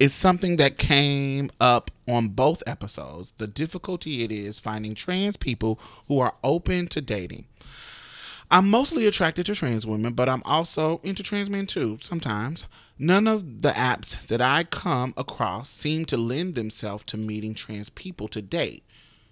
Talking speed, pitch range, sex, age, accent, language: 160 wpm, 110-165 Hz, male, 30-49, American, English